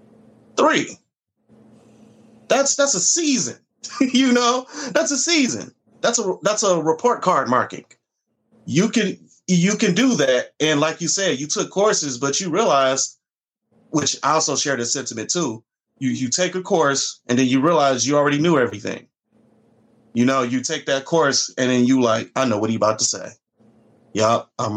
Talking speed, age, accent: 175 wpm, 30-49, American